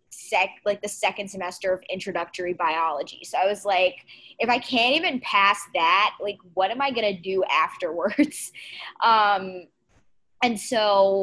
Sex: female